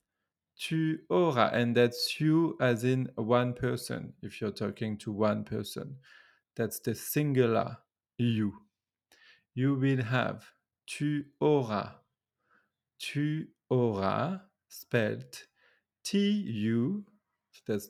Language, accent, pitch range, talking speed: French, French, 110-145 Hz, 95 wpm